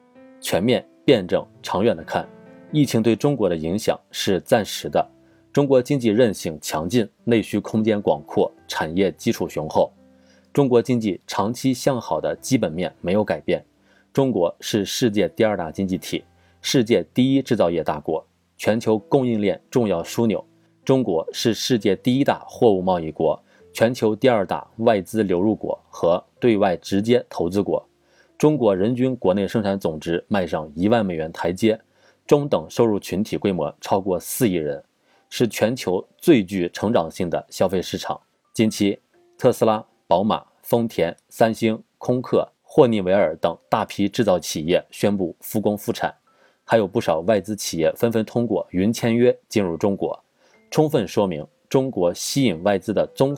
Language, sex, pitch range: Chinese, male, 100-130 Hz